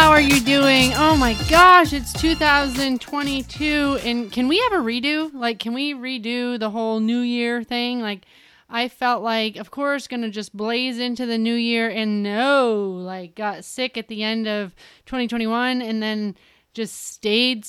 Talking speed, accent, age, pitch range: 175 wpm, American, 30-49, 210-255 Hz